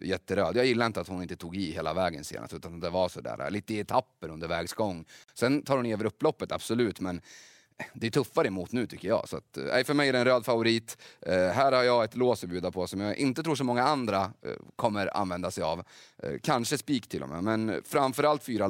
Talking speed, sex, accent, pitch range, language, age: 220 wpm, male, native, 100-130 Hz, Swedish, 30-49